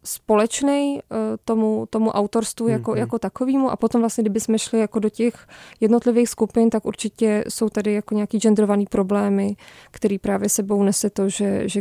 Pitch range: 205-230 Hz